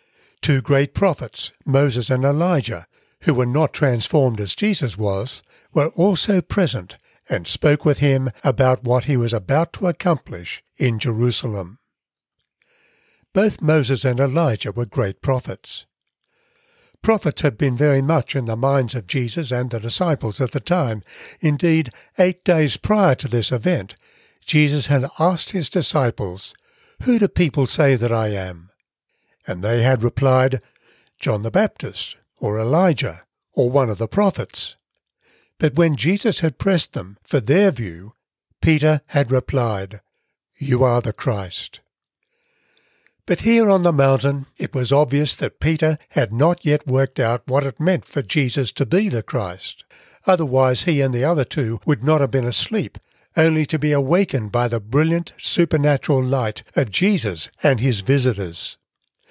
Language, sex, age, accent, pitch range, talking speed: English, male, 60-79, British, 125-160 Hz, 150 wpm